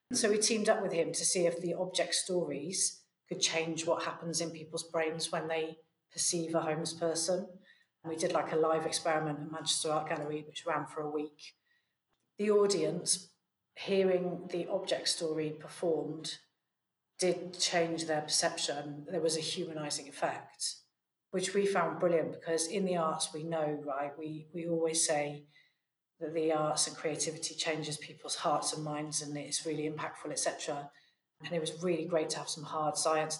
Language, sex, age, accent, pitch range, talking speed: English, female, 40-59, British, 155-185 Hz, 175 wpm